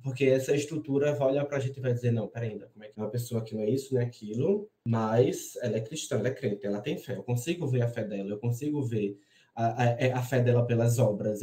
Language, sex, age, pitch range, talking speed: Portuguese, male, 20-39, 120-155 Hz, 270 wpm